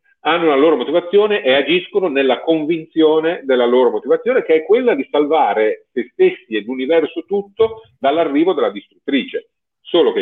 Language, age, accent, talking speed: Italian, 40-59, native, 155 wpm